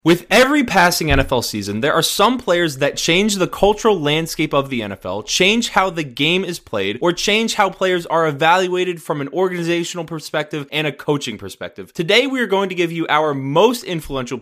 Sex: male